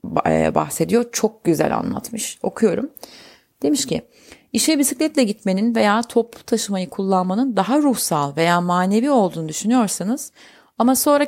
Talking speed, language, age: 115 wpm, Turkish, 40-59